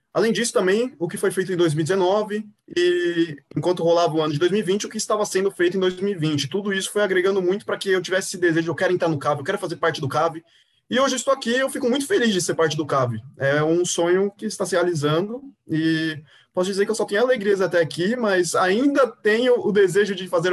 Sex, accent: male, Brazilian